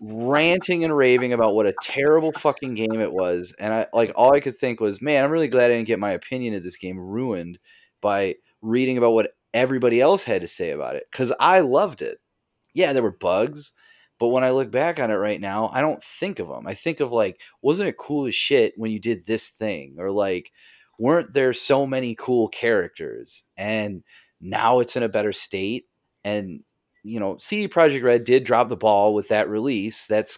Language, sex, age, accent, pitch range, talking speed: English, male, 30-49, American, 100-125 Hz, 215 wpm